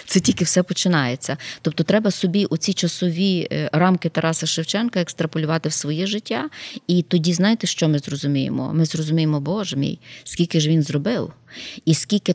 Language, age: Ukrainian, 20-39